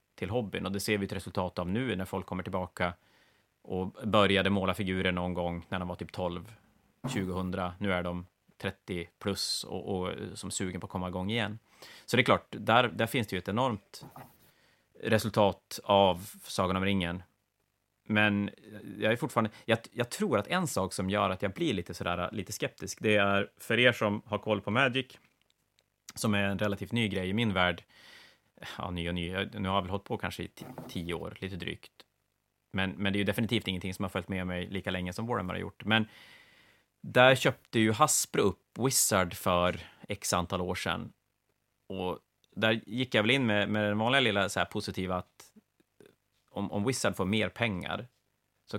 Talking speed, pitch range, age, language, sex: 200 wpm, 90-105 Hz, 30-49, Swedish, male